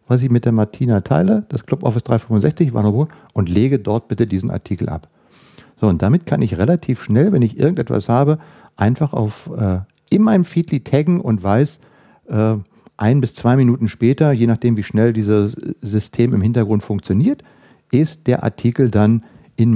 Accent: German